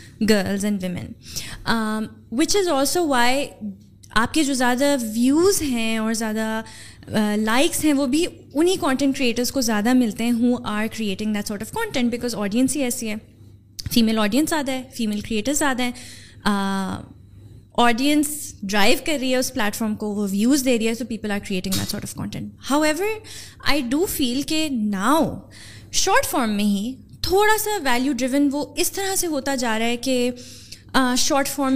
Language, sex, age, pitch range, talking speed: Urdu, female, 20-39, 215-270 Hz, 170 wpm